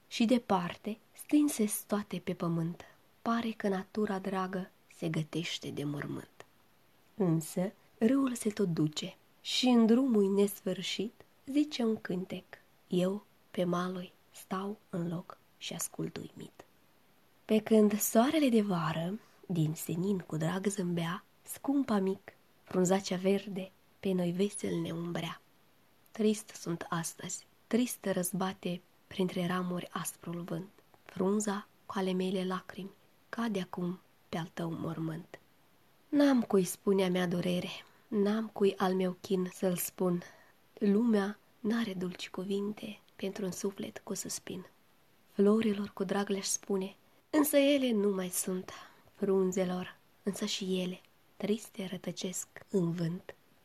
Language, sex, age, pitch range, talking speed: Romanian, female, 20-39, 180-210 Hz, 125 wpm